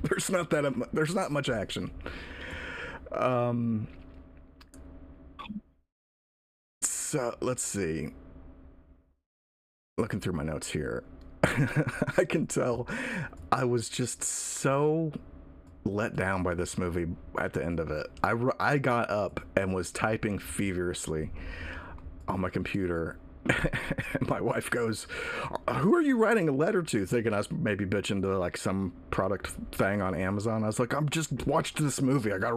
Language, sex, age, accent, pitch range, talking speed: English, male, 30-49, American, 80-120 Hz, 145 wpm